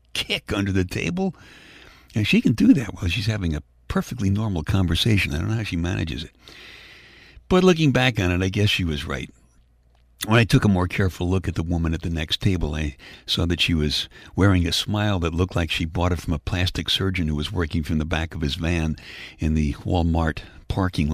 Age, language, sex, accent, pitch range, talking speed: 60-79, English, male, American, 80-110 Hz, 220 wpm